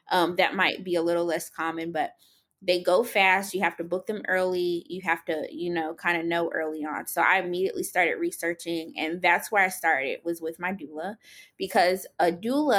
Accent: American